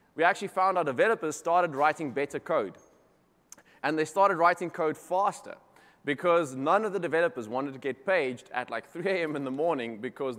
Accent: South African